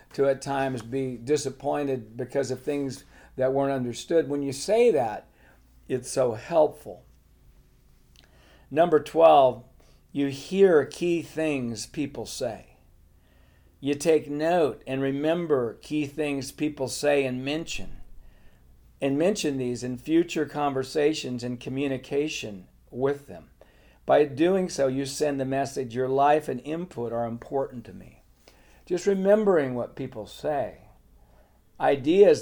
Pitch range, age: 120-150 Hz, 50-69